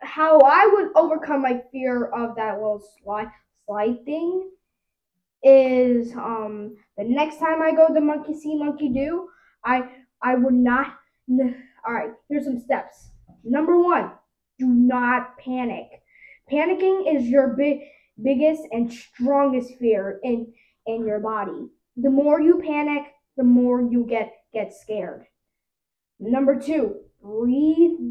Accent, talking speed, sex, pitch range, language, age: American, 135 wpm, female, 235-305 Hz, English, 10-29